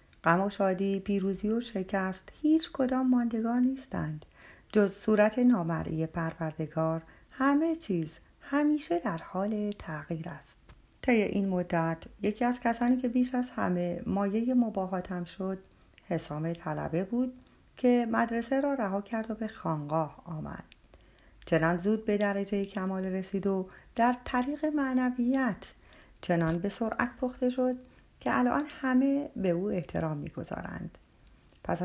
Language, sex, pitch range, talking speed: Persian, female, 175-245 Hz, 130 wpm